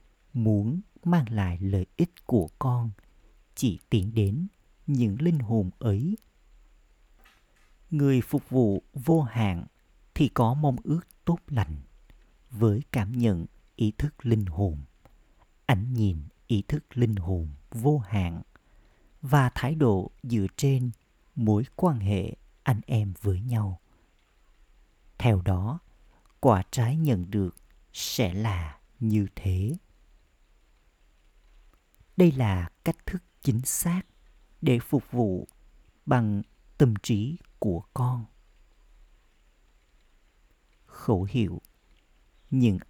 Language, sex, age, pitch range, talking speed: Vietnamese, male, 50-69, 95-125 Hz, 110 wpm